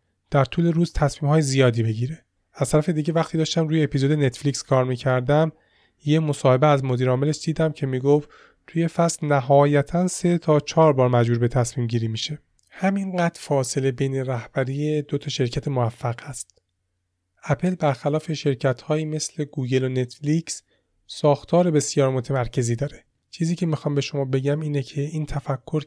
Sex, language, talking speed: male, Persian, 160 wpm